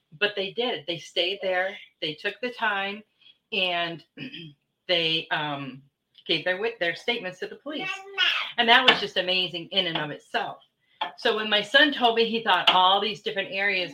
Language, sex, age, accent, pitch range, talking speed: English, female, 40-59, American, 170-205 Hz, 175 wpm